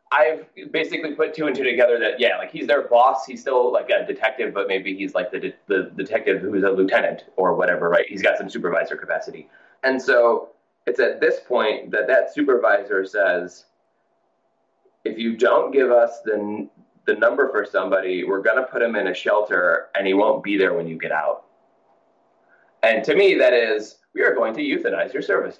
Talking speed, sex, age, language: 205 wpm, male, 20-39, English